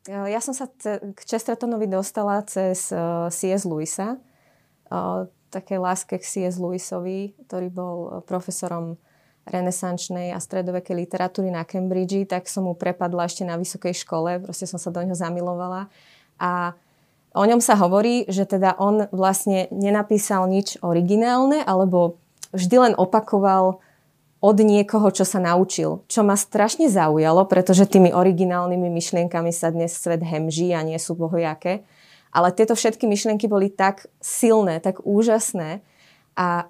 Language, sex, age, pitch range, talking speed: Slovak, female, 20-39, 175-205 Hz, 140 wpm